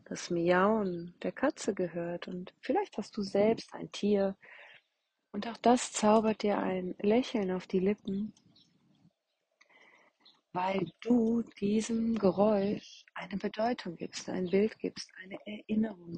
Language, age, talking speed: German, 40-59, 125 wpm